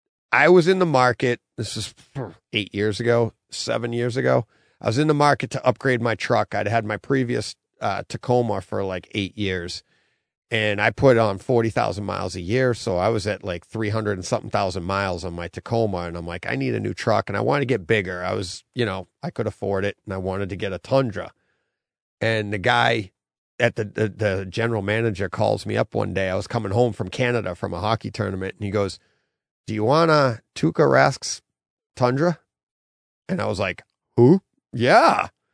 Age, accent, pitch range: 40-59, American, 100-120 Hz